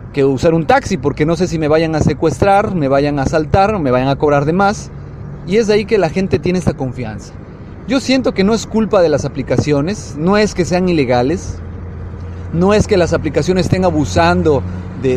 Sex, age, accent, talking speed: male, 30-49, Mexican, 220 wpm